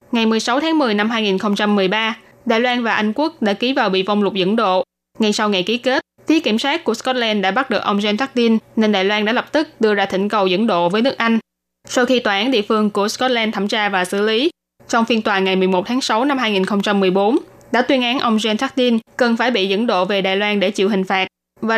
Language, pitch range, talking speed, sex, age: Vietnamese, 195-245 Hz, 250 wpm, female, 10-29